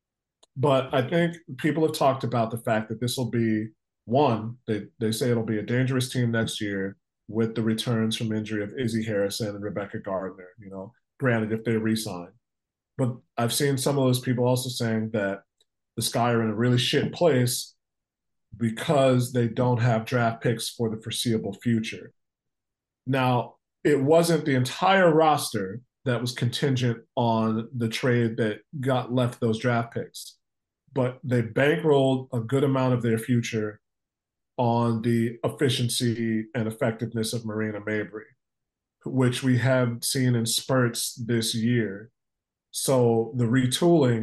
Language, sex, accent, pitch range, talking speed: English, male, American, 115-130 Hz, 155 wpm